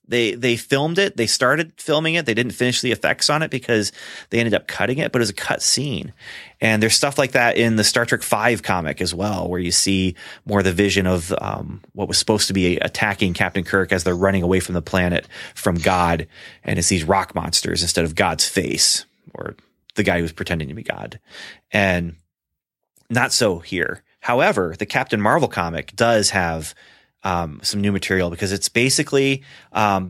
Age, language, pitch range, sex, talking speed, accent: 30-49, English, 90-115 Hz, male, 200 wpm, American